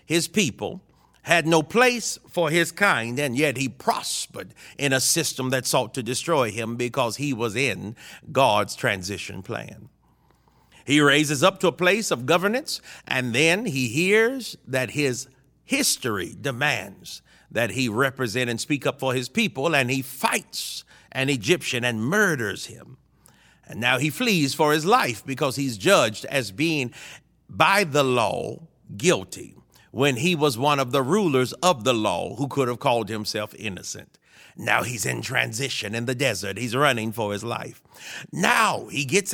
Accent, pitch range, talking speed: American, 125-170 Hz, 165 wpm